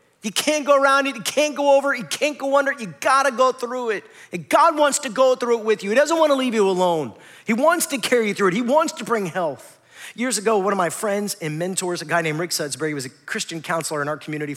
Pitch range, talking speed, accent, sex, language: 160-240 Hz, 275 wpm, American, male, English